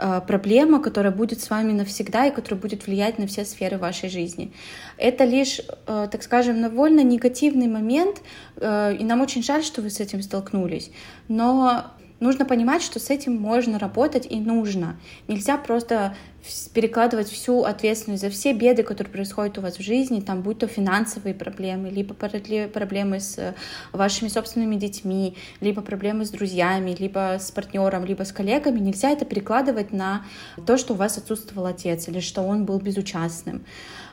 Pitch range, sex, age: 190-230 Hz, female, 20-39